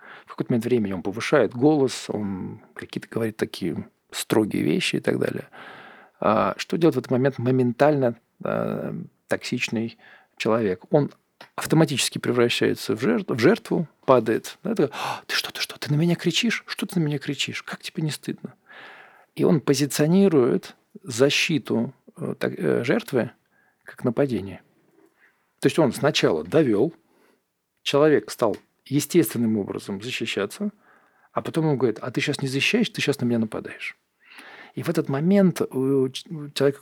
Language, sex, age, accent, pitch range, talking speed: Russian, male, 40-59, native, 120-160 Hz, 140 wpm